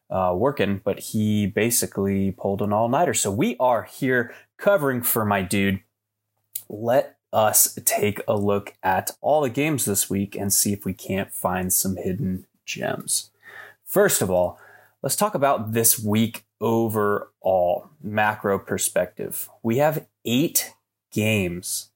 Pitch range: 100-115 Hz